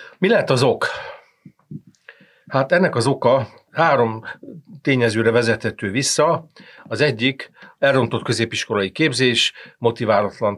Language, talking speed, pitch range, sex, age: Hungarian, 100 wpm, 105-125 Hz, male, 50-69